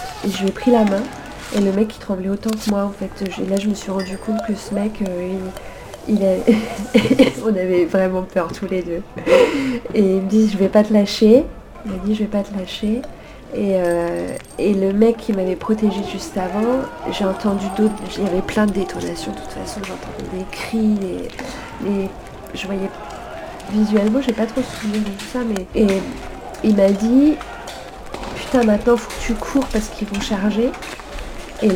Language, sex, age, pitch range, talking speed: French, female, 30-49, 190-220 Hz, 200 wpm